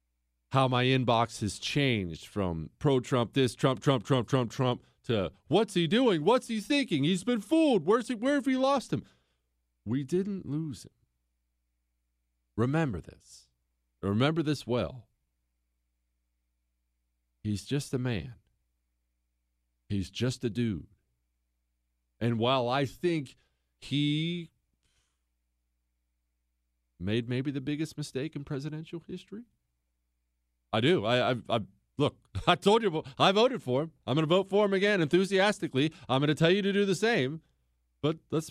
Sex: male